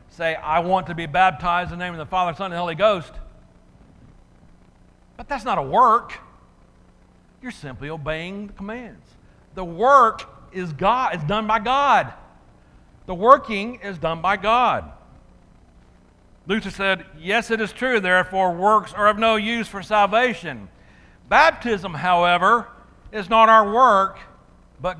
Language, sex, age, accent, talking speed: English, male, 60-79, American, 150 wpm